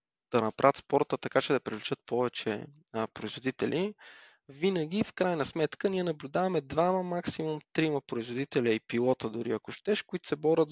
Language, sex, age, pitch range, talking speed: Bulgarian, male, 20-39, 115-155 Hz, 150 wpm